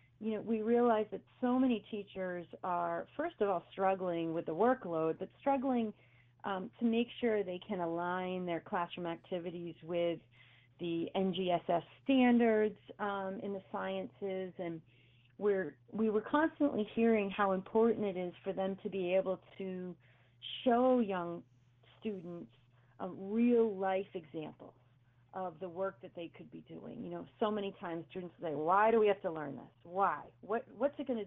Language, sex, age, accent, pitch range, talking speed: English, female, 40-59, American, 170-230 Hz, 165 wpm